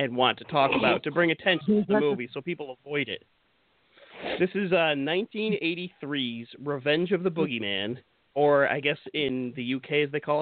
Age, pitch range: 30-49, 125-165 Hz